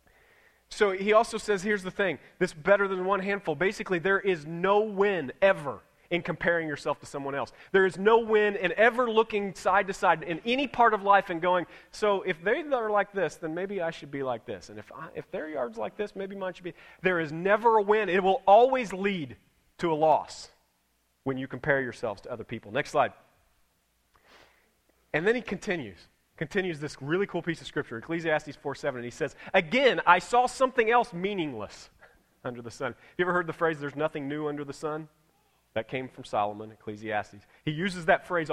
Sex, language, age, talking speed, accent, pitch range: male, English, 30-49, 205 wpm, American, 150-195 Hz